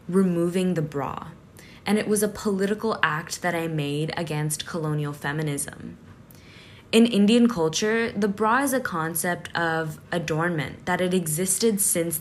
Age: 10-29